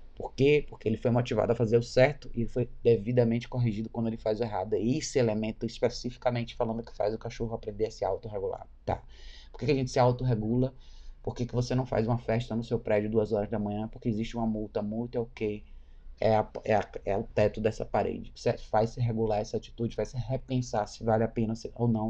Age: 20-39